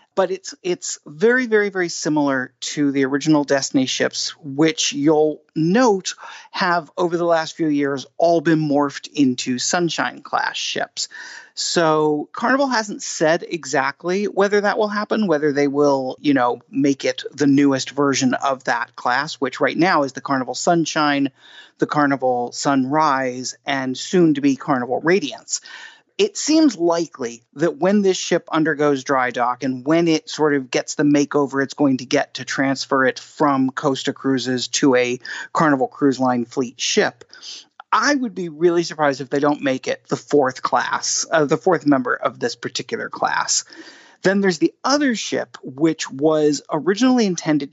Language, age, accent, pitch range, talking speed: English, 40-59, American, 140-180 Hz, 160 wpm